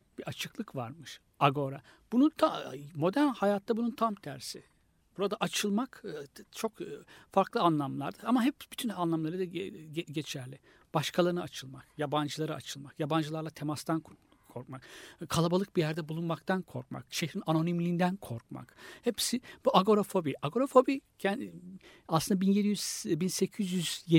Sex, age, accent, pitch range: male, 60-79, native, 135-200 Hz